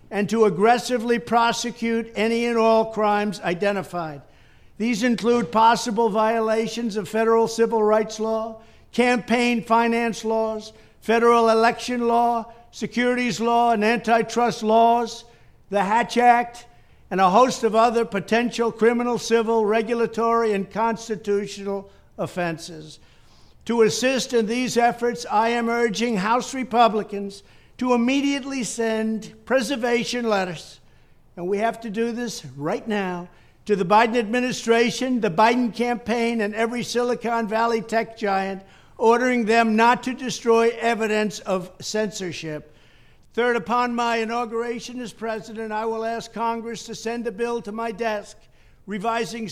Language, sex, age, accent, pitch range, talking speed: English, male, 60-79, American, 215-235 Hz, 130 wpm